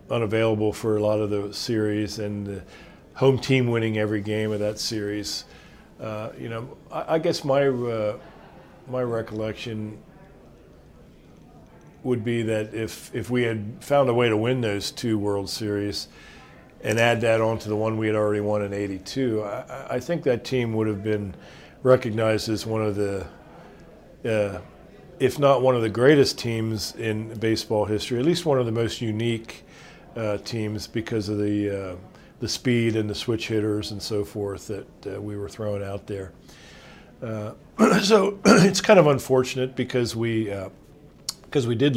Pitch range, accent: 105-120 Hz, American